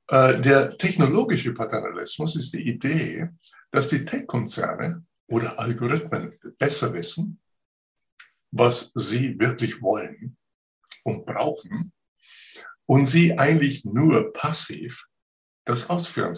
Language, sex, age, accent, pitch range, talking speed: German, male, 60-79, German, 120-175 Hz, 95 wpm